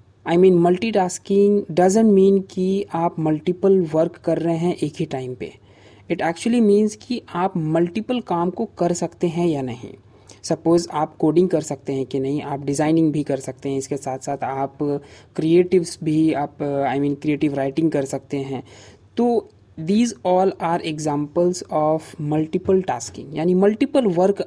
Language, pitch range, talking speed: Hindi, 140-180 Hz, 170 wpm